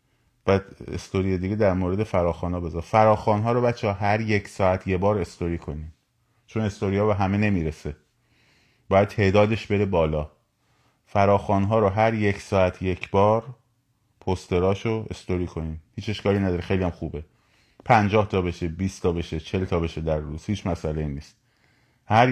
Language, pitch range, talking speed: Persian, 90-110 Hz, 170 wpm